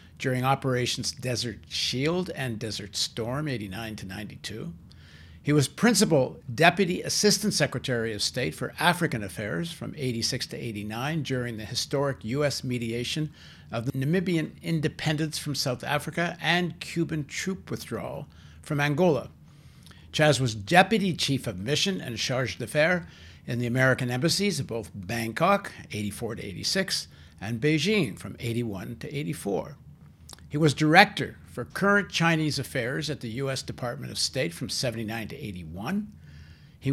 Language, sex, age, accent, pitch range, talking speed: English, male, 60-79, American, 115-160 Hz, 140 wpm